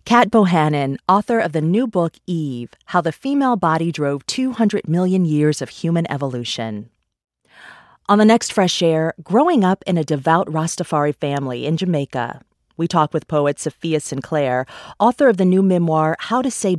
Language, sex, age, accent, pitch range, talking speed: English, female, 40-59, American, 145-185 Hz, 170 wpm